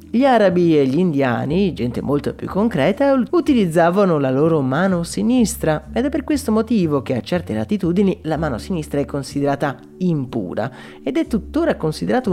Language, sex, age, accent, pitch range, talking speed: Italian, male, 30-49, native, 140-210 Hz, 160 wpm